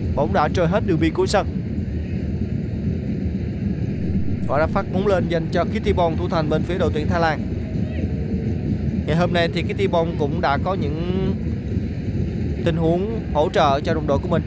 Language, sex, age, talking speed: Vietnamese, male, 20-39, 185 wpm